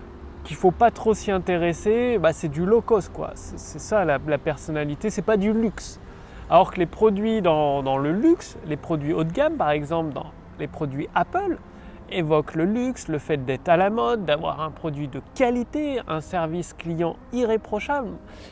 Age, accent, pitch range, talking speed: 30-49, French, 150-230 Hz, 190 wpm